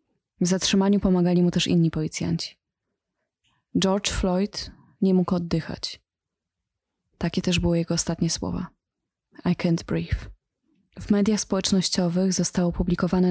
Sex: female